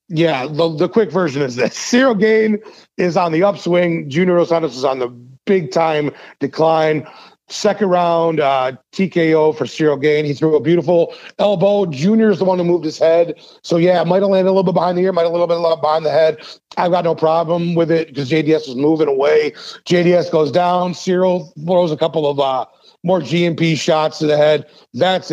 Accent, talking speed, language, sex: American, 210 wpm, English, male